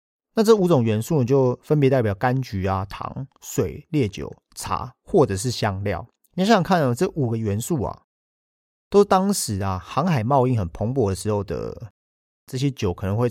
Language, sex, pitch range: Chinese, male, 100-145 Hz